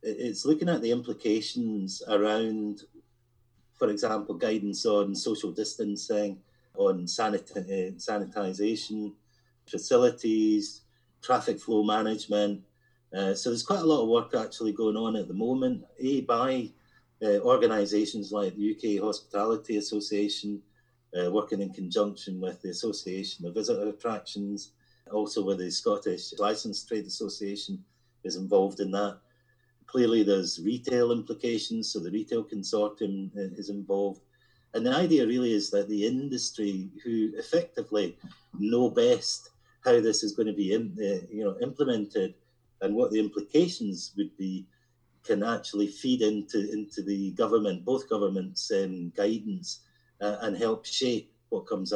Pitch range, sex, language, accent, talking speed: 100-125 Hz, male, English, British, 135 wpm